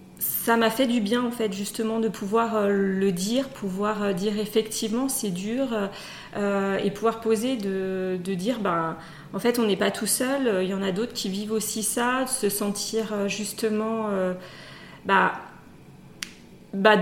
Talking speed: 165 wpm